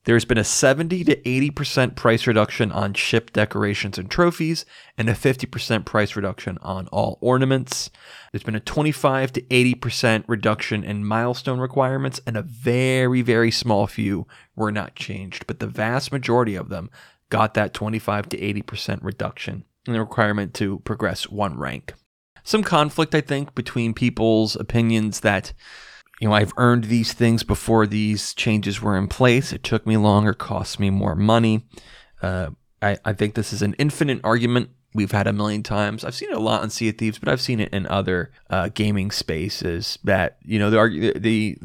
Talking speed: 180 wpm